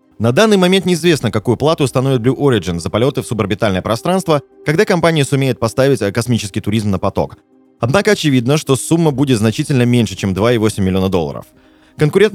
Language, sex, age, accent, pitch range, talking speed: Russian, male, 20-39, native, 110-155 Hz, 165 wpm